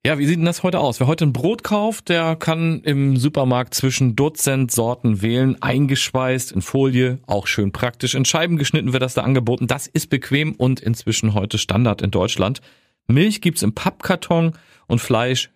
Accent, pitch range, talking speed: German, 110-155 Hz, 190 wpm